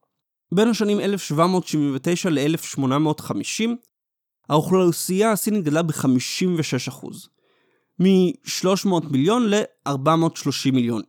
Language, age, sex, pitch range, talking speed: Hebrew, 30-49, male, 140-205 Hz, 70 wpm